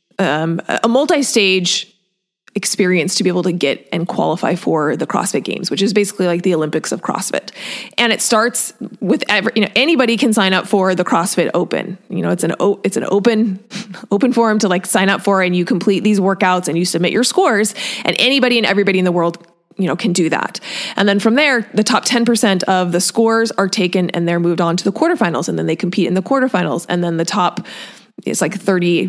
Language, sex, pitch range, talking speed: English, female, 180-225 Hz, 220 wpm